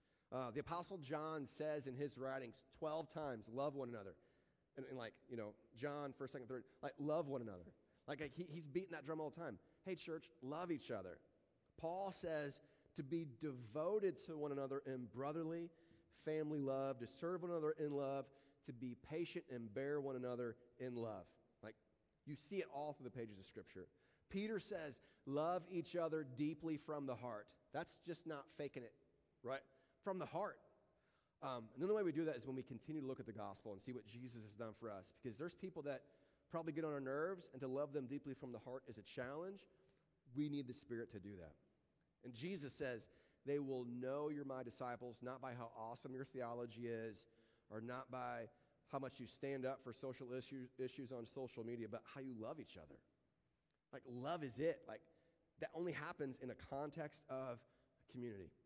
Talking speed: 205 wpm